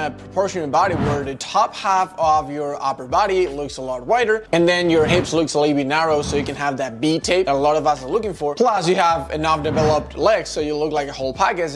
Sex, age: male, 20-39